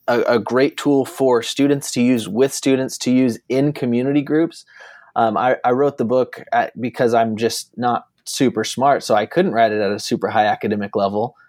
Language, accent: English, American